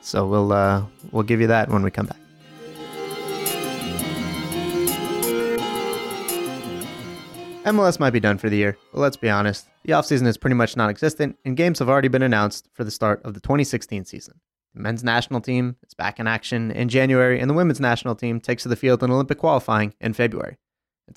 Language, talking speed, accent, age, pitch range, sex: English, 185 wpm, American, 20-39, 105-140 Hz, male